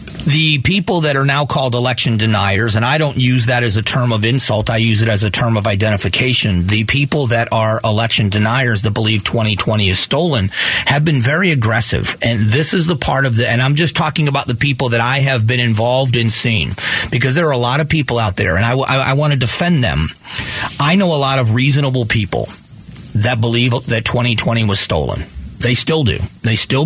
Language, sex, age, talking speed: English, male, 40-59, 215 wpm